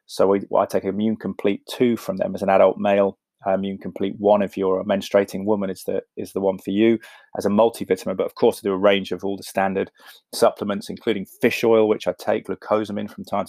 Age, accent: 20-39, British